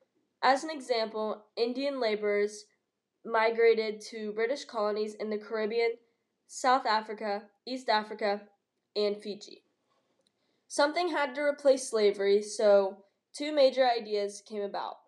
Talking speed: 115 wpm